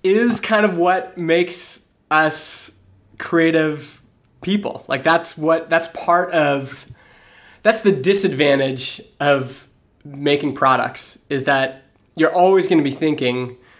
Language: English